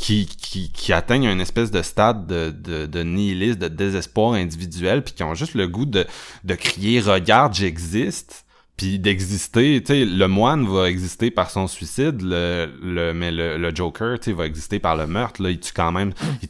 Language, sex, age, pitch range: French, male, 20-39, 90-115 Hz